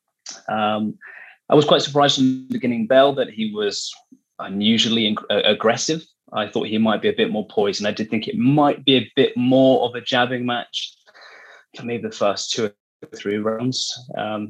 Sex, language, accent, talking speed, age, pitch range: male, English, British, 195 wpm, 20-39, 105-135 Hz